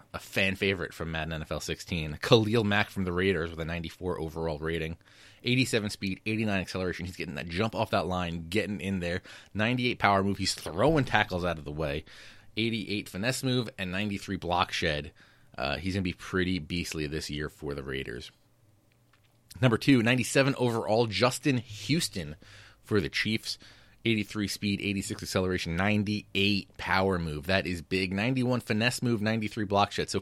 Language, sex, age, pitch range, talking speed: English, male, 30-49, 85-110 Hz, 170 wpm